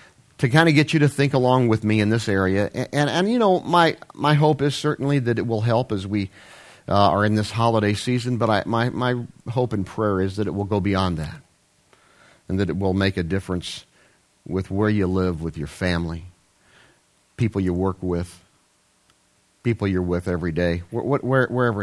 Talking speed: 205 wpm